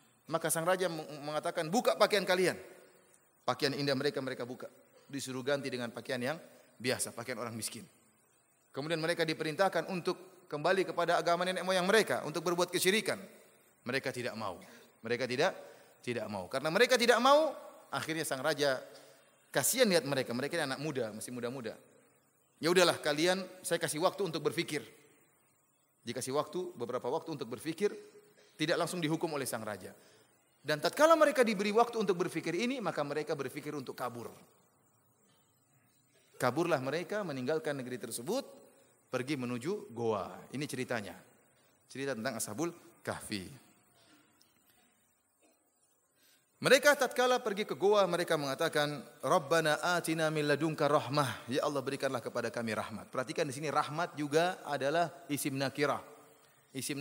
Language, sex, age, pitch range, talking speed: Indonesian, male, 30-49, 135-180 Hz, 140 wpm